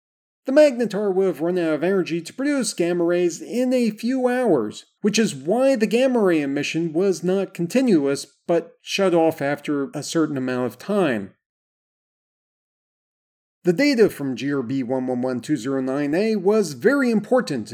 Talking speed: 145 wpm